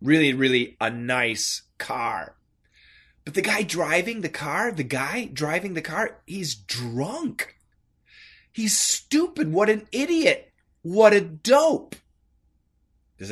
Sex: male